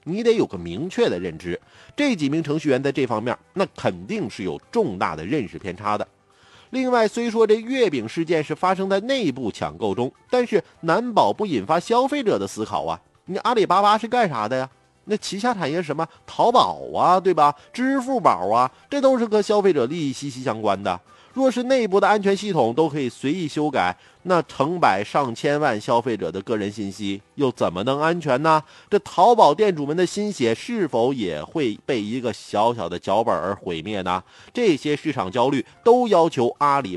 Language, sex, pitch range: Chinese, male, 135-210 Hz